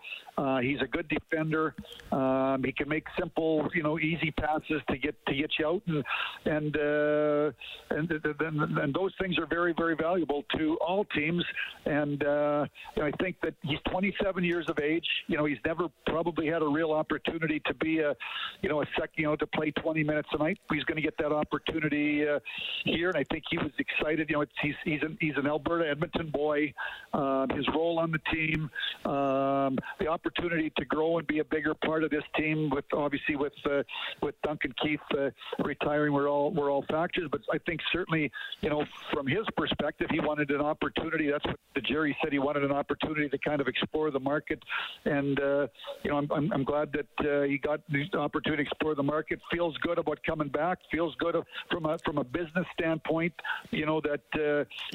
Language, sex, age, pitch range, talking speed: English, male, 50-69, 145-160 Hz, 210 wpm